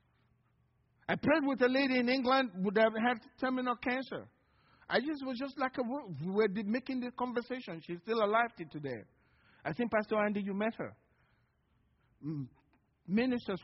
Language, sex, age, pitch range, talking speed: English, male, 50-69, 155-245 Hz, 160 wpm